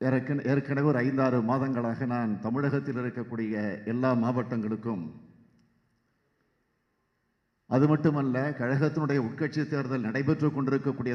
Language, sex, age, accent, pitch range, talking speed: Tamil, male, 50-69, native, 115-135 Hz, 90 wpm